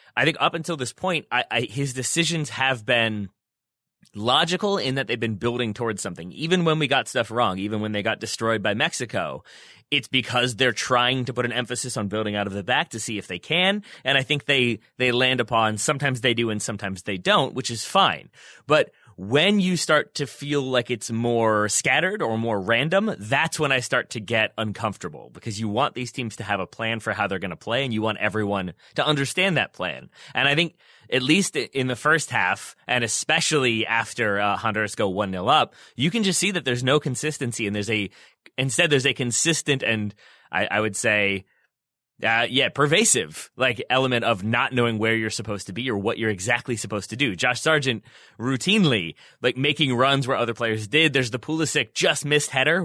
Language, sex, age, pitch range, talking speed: English, male, 30-49, 110-145 Hz, 210 wpm